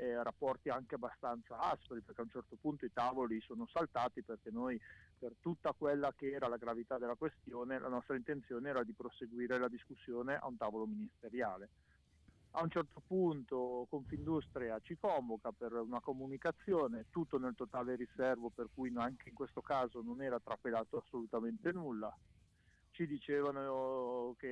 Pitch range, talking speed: 125-150 Hz, 155 wpm